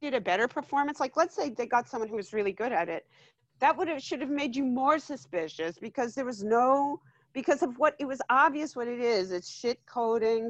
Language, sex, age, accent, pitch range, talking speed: English, female, 40-59, American, 200-260 Hz, 235 wpm